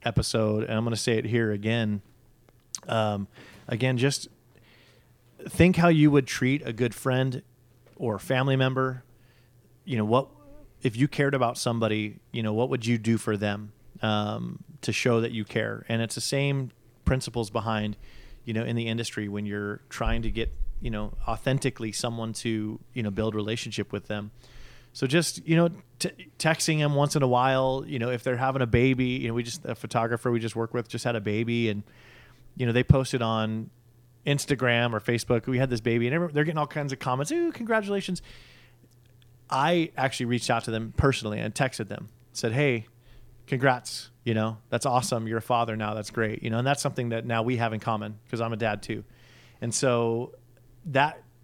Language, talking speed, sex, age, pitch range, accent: English, 195 wpm, male, 30-49, 115-130 Hz, American